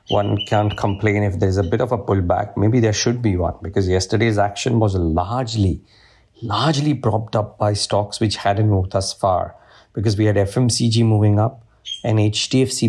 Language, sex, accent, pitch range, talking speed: English, male, Indian, 100-115 Hz, 175 wpm